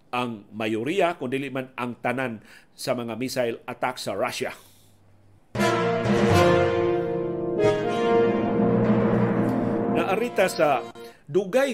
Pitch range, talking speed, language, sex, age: 125-160 Hz, 80 wpm, Filipino, male, 50-69